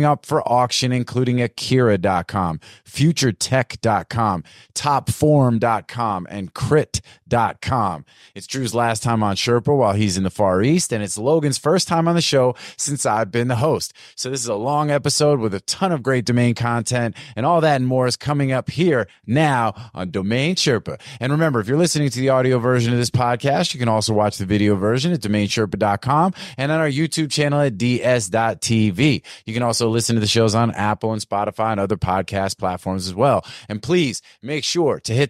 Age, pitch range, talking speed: 30-49, 110-140 Hz, 190 wpm